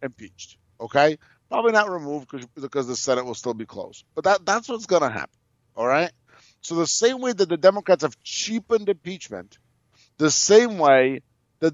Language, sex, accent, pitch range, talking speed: English, male, American, 130-175 Hz, 180 wpm